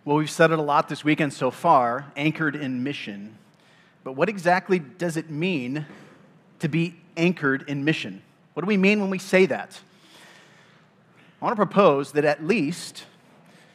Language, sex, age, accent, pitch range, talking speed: English, male, 30-49, American, 145-185 Hz, 170 wpm